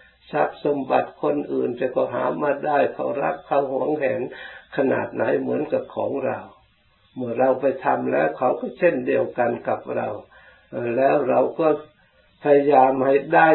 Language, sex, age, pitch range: Thai, male, 60-79, 125-150 Hz